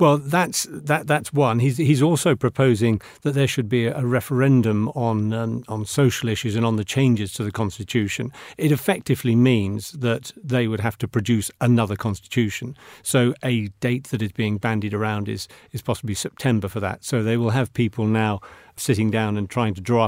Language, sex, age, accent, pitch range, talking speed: English, male, 40-59, British, 110-135 Hz, 190 wpm